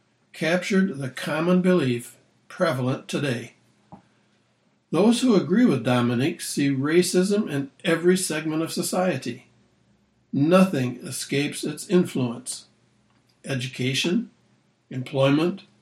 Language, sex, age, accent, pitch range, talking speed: English, male, 60-79, American, 135-185 Hz, 90 wpm